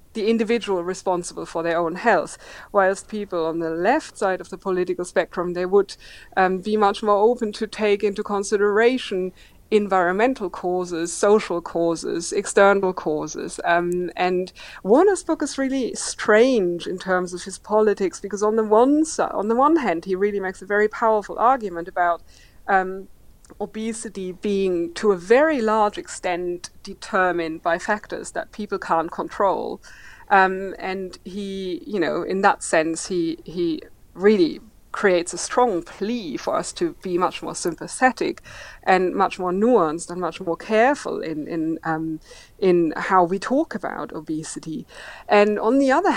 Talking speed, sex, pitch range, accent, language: 155 wpm, female, 180-225 Hz, German, English